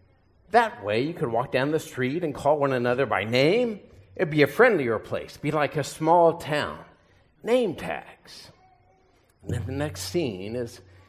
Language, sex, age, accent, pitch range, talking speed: English, male, 50-69, American, 110-155 Hz, 175 wpm